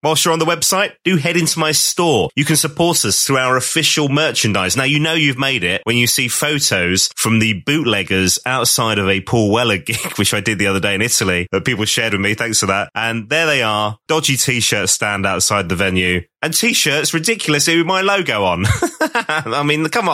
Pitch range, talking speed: 110-155 Hz, 220 wpm